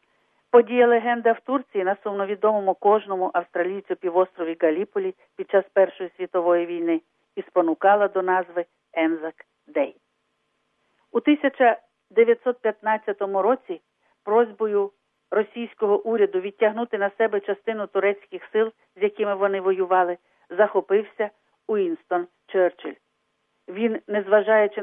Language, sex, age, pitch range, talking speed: Ukrainian, female, 50-69, 180-230 Hz, 100 wpm